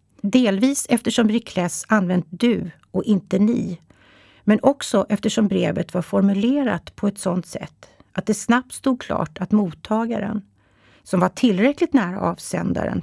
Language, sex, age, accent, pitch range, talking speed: Swedish, female, 60-79, native, 180-230 Hz, 140 wpm